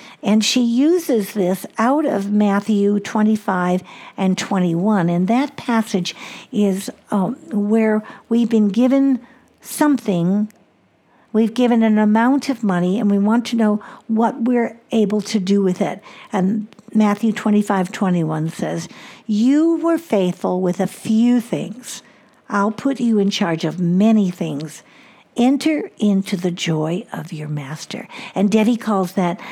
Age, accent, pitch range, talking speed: 60-79, American, 200-245 Hz, 140 wpm